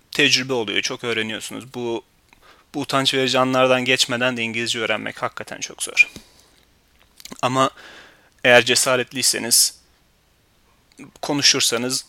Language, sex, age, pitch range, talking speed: Turkish, male, 30-49, 120-135 Hz, 100 wpm